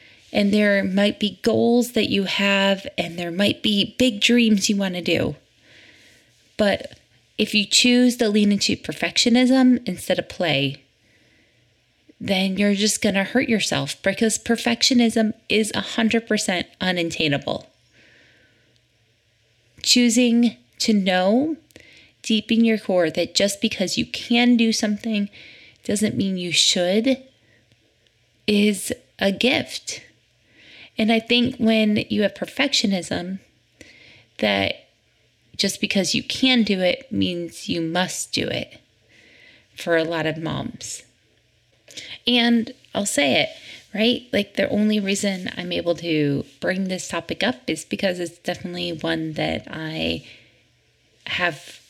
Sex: female